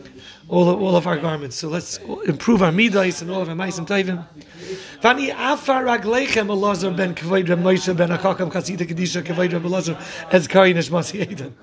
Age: 30-49